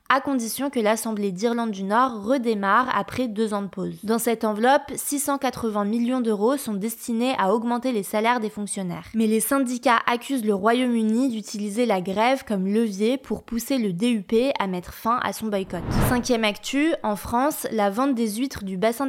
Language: French